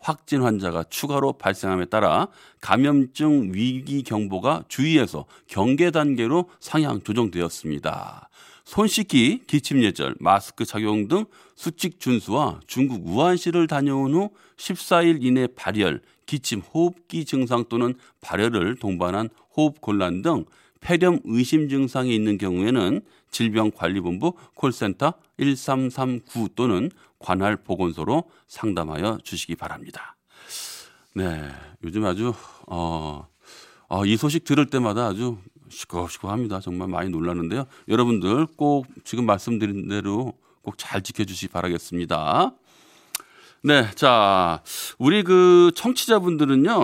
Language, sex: Korean, male